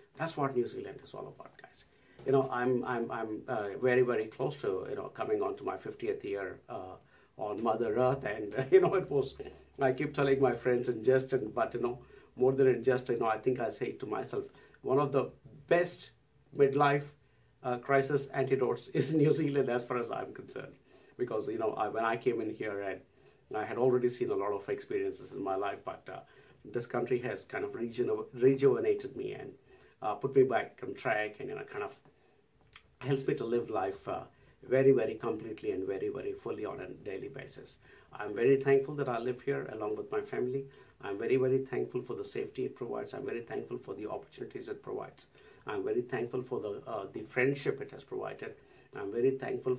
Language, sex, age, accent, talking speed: English, male, 50-69, Indian, 210 wpm